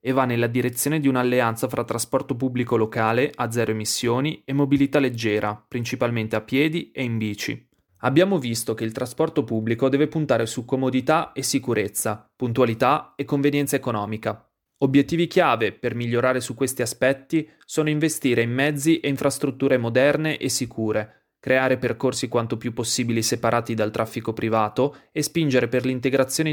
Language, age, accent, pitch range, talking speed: Italian, 20-39, native, 115-140 Hz, 150 wpm